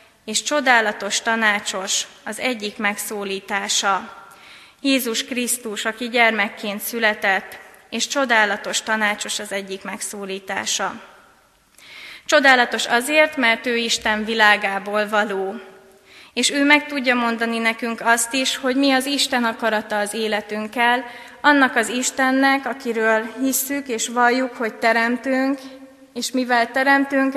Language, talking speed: Hungarian, 110 wpm